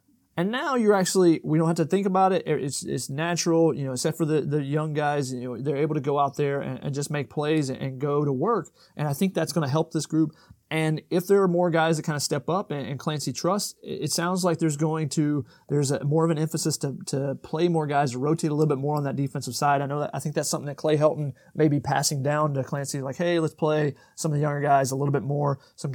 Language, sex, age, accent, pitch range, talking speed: English, male, 30-49, American, 140-165 Hz, 275 wpm